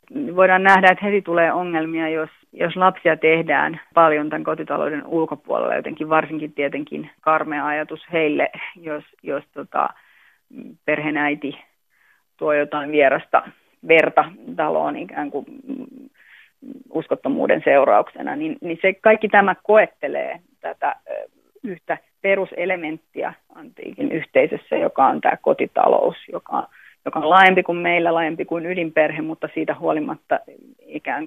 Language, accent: Finnish, native